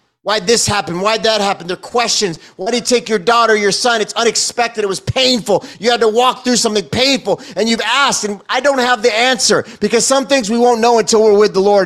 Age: 30-49